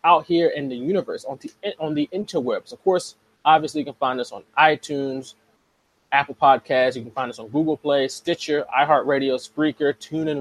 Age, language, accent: 20-39, English, American